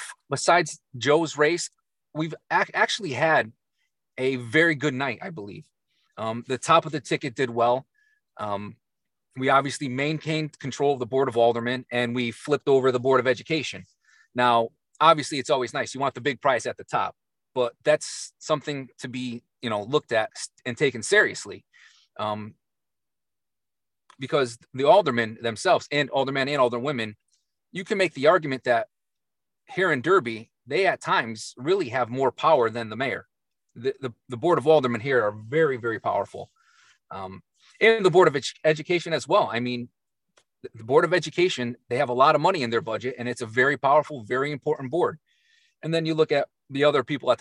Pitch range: 120-155 Hz